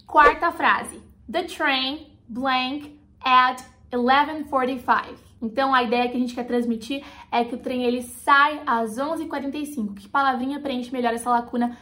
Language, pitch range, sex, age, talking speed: Portuguese, 240-285 Hz, female, 20-39, 140 wpm